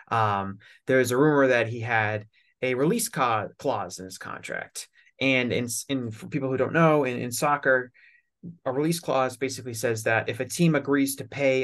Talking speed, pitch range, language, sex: 190 wpm, 110-145 Hz, English, male